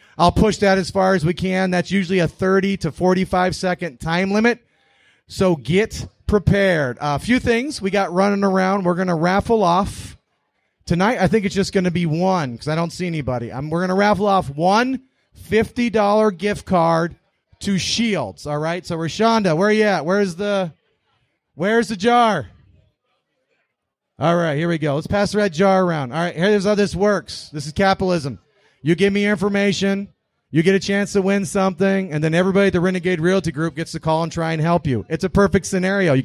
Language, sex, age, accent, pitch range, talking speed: English, male, 30-49, American, 170-205 Hz, 200 wpm